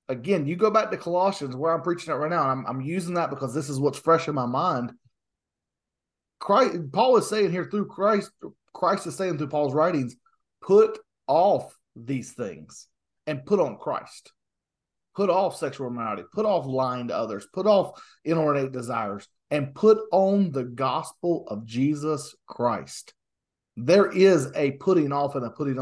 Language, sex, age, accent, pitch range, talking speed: English, male, 30-49, American, 130-195 Hz, 170 wpm